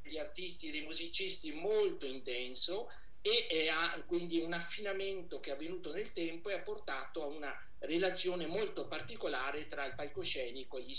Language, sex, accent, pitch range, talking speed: Italian, male, native, 145-215 Hz, 165 wpm